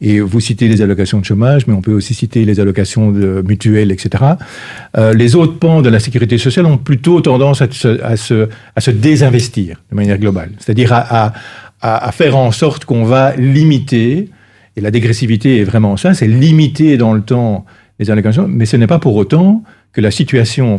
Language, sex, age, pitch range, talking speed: French, male, 50-69, 105-145 Hz, 205 wpm